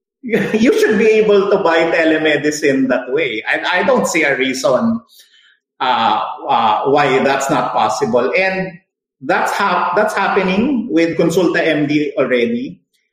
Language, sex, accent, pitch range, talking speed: English, male, Filipino, 155-235 Hz, 140 wpm